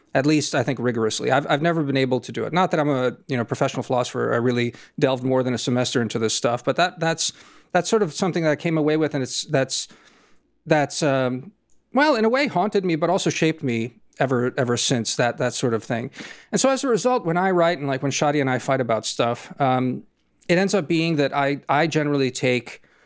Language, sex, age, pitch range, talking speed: English, male, 40-59, 125-155 Hz, 240 wpm